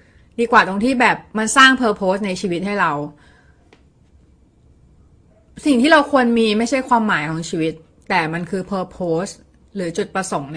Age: 20-39